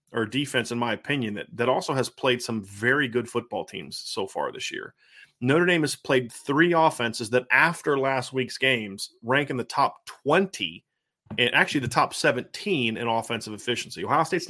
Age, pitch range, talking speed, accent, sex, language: 30-49, 120-155 Hz, 185 wpm, American, male, English